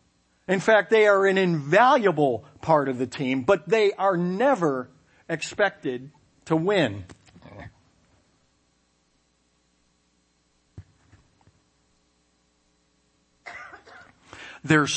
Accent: American